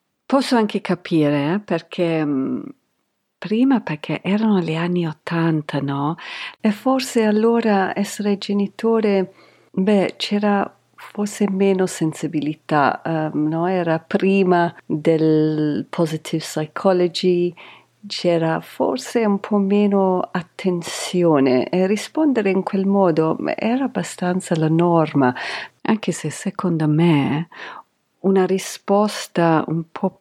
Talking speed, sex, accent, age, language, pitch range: 100 wpm, female, native, 50-69, Italian, 155-200 Hz